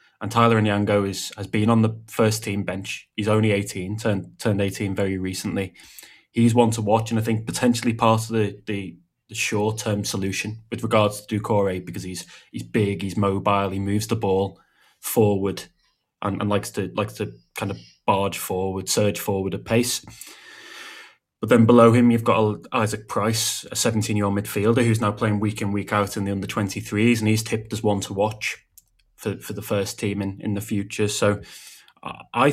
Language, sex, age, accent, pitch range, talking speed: English, male, 20-39, British, 100-115 Hz, 200 wpm